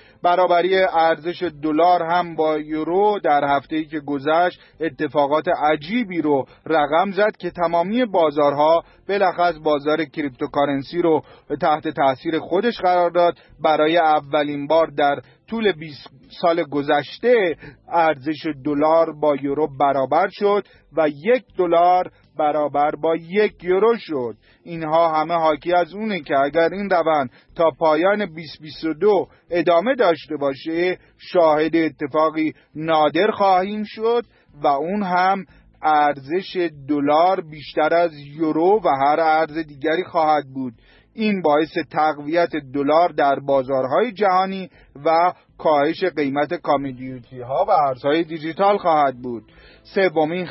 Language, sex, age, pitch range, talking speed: Persian, male, 40-59, 145-175 Hz, 120 wpm